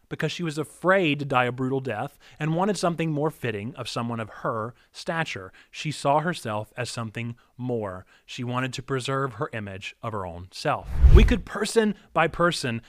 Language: English